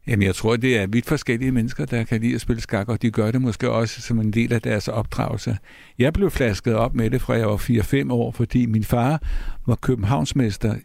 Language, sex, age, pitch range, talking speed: Danish, male, 60-79, 115-135 Hz, 230 wpm